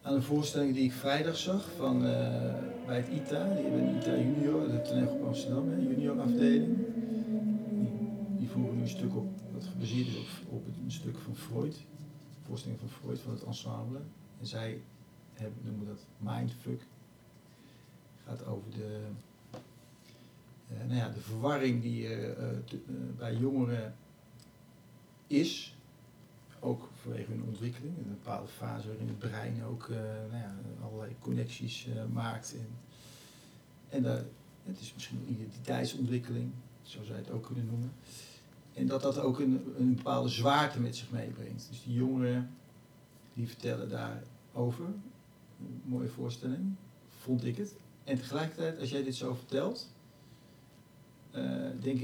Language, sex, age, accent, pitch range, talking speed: Dutch, male, 50-69, Dutch, 110-140 Hz, 150 wpm